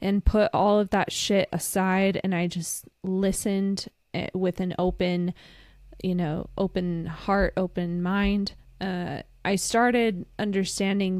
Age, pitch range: 20-39, 175-200 Hz